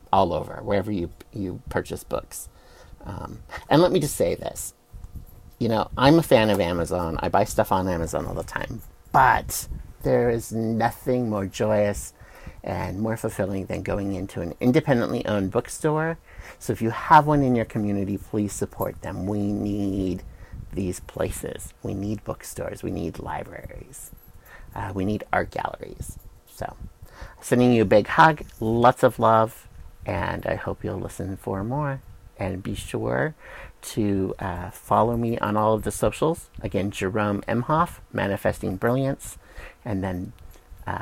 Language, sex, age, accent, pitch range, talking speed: English, male, 50-69, American, 95-115 Hz, 155 wpm